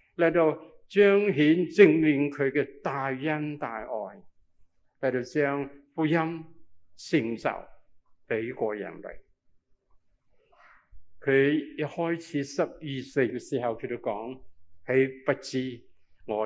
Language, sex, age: Chinese, male, 50-69